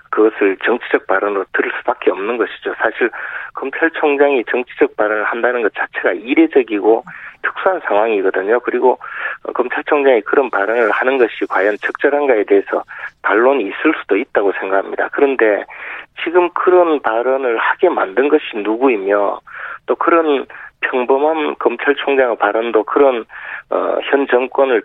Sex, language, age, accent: male, Korean, 40-59, native